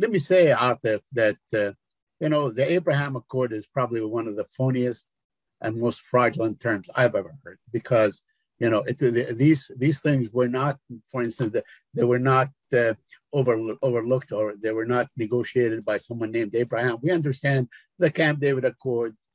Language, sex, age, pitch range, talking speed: Arabic, male, 50-69, 115-145 Hz, 175 wpm